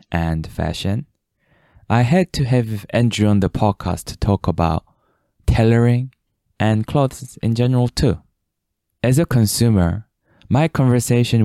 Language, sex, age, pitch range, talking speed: English, male, 20-39, 95-125 Hz, 125 wpm